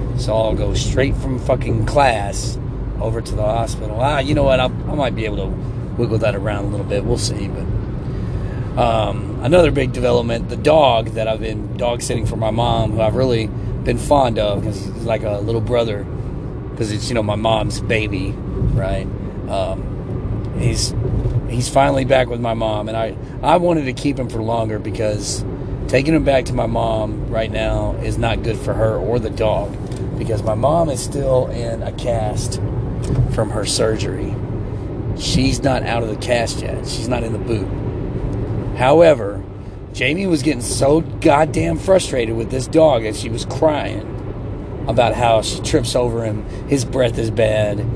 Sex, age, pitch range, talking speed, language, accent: male, 30-49, 105-125 Hz, 180 wpm, English, American